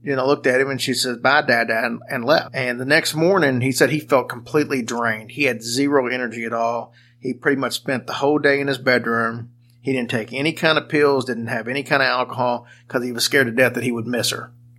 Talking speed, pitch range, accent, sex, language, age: 255 wpm, 120-140 Hz, American, male, English, 40-59